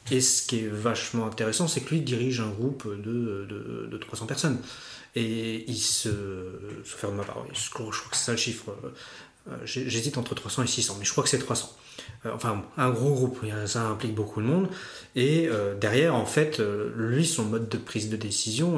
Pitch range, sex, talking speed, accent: 110-135 Hz, male, 190 wpm, French